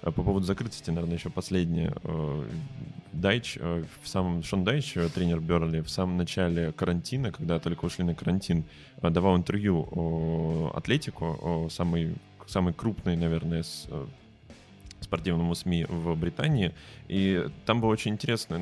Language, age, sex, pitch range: Russian, 20-39, male, 85-100 Hz